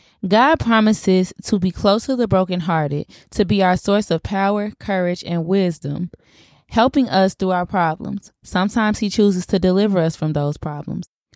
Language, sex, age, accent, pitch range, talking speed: English, female, 20-39, American, 165-200 Hz, 165 wpm